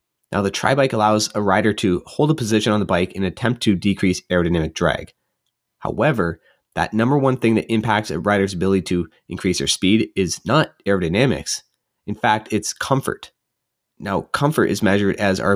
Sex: male